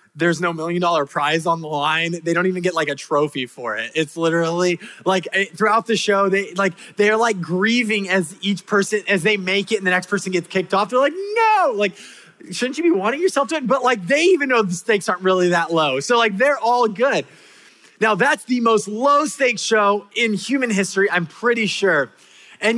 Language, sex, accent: English, male, American